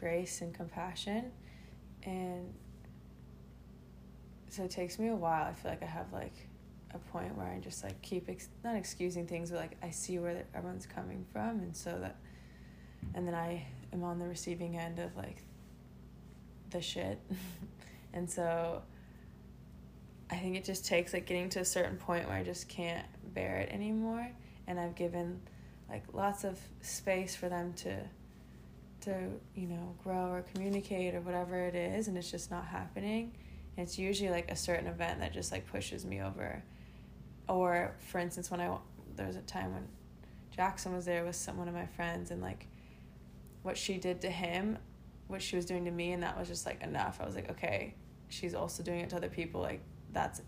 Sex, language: female, English